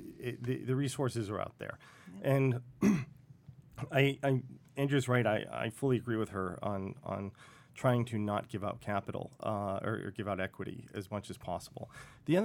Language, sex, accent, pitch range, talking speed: English, male, American, 105-140 Hz, 185 wpm